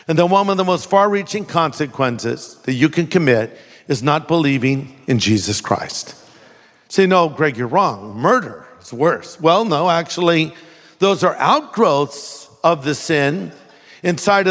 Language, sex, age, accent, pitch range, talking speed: English, male, 50-69, American, 145-195 Hz, 150 wpm